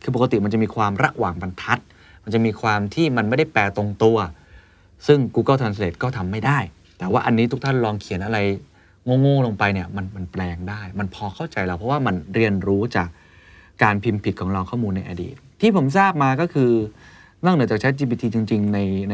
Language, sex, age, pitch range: Thai, male, 30-49, 90-110 Hz